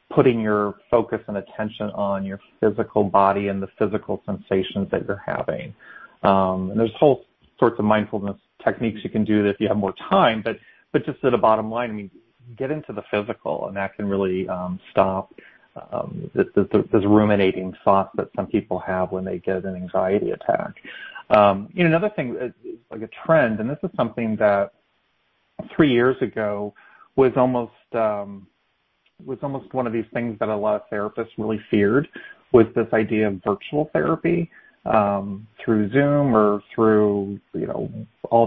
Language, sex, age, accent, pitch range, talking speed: English, male, 40-59, American, 100-120 Hz, 175 wpm